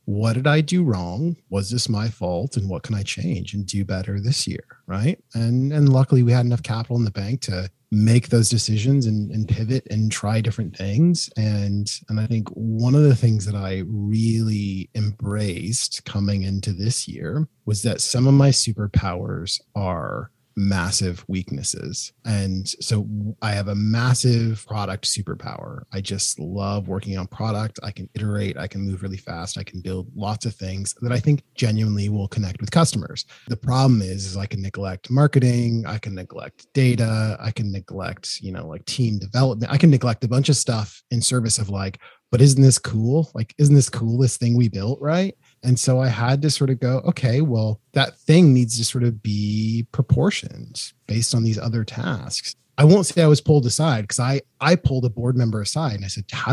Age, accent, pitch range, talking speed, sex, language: 30-49, American, 105-130 Hz, 200 wpm, male, English